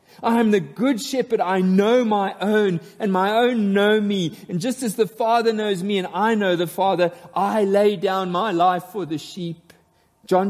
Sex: male